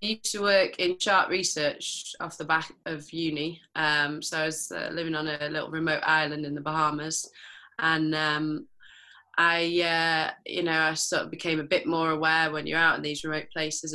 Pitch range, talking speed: 155-180 Hz, 200 wpm